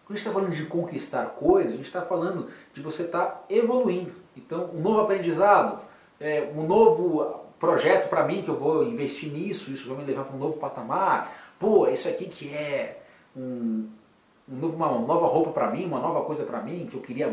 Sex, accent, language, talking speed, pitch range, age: male, Brazilian, Portuguese, 195 wpm, 125-180 Hz, 30-49